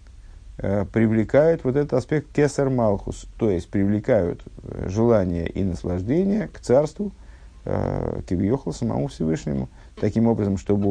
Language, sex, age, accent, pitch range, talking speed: Russian, male, 50-69, native, 95-125 Hz, 110 wpm